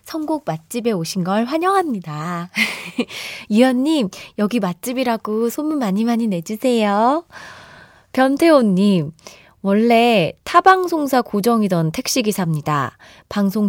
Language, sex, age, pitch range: Korean, female, 20-39, 185-250 Hz